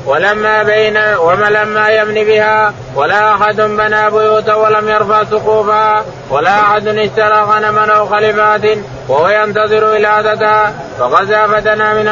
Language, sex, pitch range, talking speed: Arabic, male, 210-215 Hz, 120 wpm